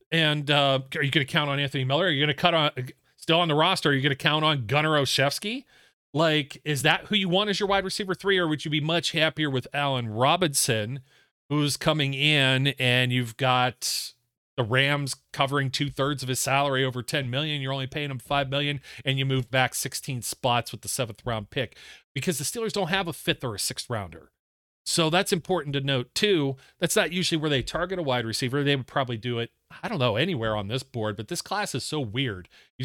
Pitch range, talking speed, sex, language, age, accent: 130-160 Hz, 230 wpm, male, English, 40-59, American